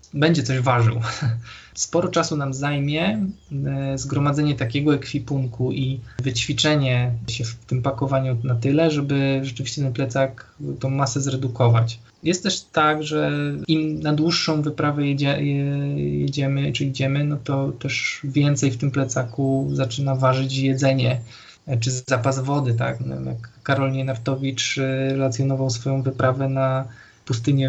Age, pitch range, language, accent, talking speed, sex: 20-39, 130-145 Hz, Polish, native, 130 wpm, male